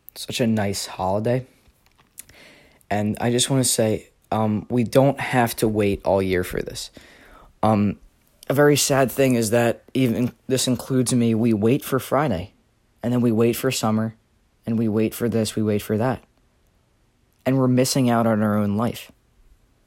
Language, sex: English, male